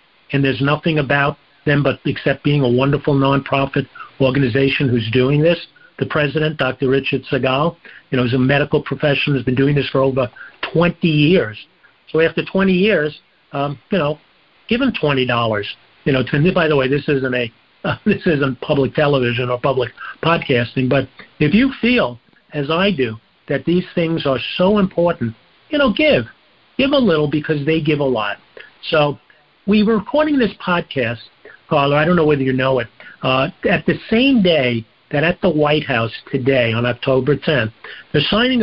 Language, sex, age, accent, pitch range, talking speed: English, male, 50-69, American, 130-165 Hz, 180 wpm